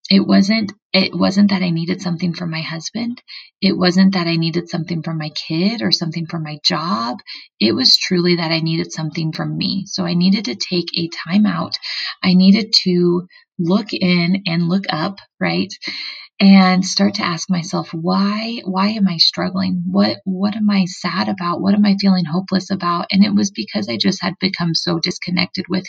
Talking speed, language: 190 wpm, English